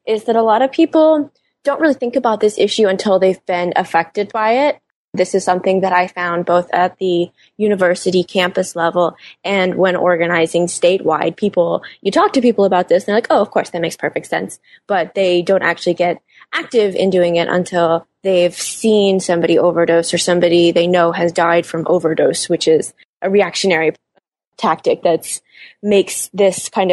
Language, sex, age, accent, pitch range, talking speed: English, female, 20-39, American, 175-210 Hz, 185 wpm